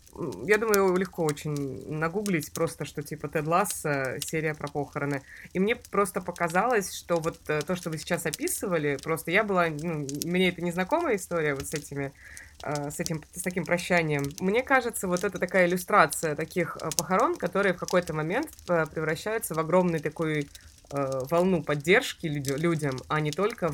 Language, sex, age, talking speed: Russian, female, 20-39, 160 wpm